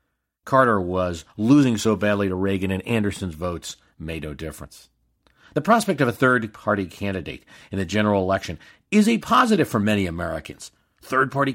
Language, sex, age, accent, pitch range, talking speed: English, male, 50-69, American, 95-145 Hz, 155 wpm